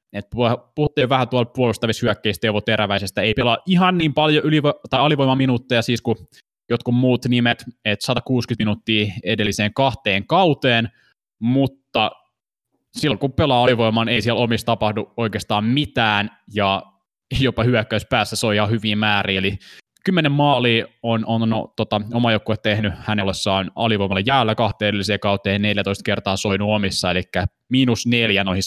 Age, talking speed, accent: 20-39, 145 wpm, native